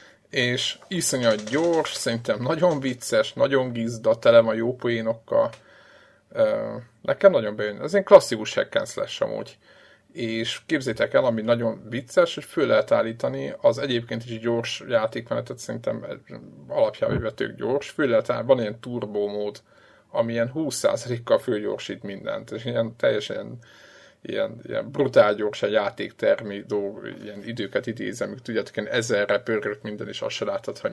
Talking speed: 140 wpm